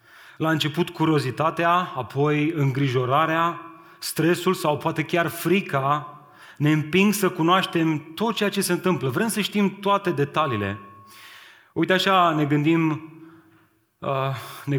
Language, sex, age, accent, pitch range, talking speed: Romanian, male, 30-49, native, 130-160 Hz, 120 wpm